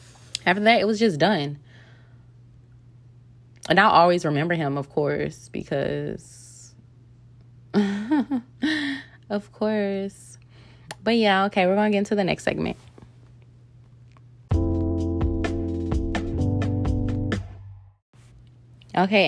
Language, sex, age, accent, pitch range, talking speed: English, female, 20-39, American, 120-175 Hz, 85 wpm